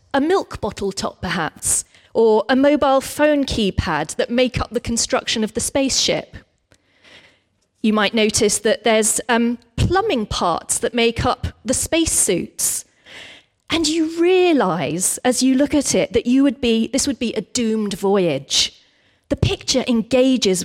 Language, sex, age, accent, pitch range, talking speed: English, female, 30-49, British, 210-285 Hz, 150 wpm